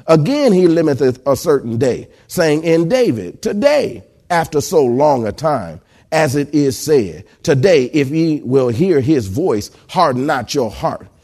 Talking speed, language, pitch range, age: 160 wpm, English, 130-180 Hz, 40-59